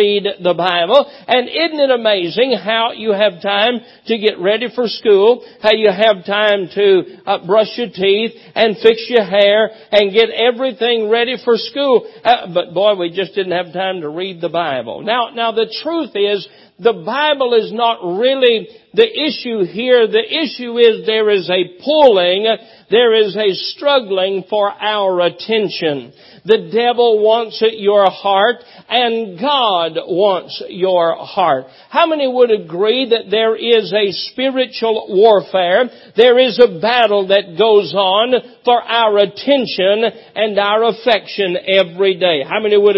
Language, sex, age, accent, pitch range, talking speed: English, male, 50-69, American, 200-250 Hz, 160 wpm